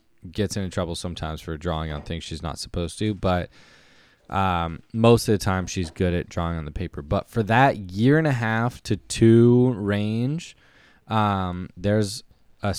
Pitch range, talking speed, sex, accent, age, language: 90-105 Hz, 180 wpm, male, American, 20-39, English